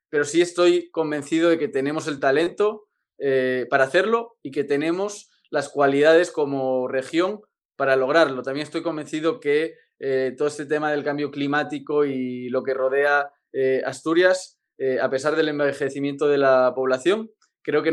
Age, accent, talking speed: 20-39, Spanish, 160 wpm